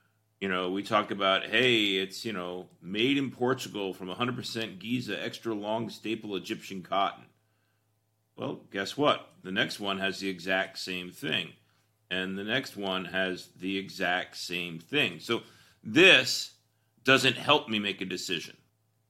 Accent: American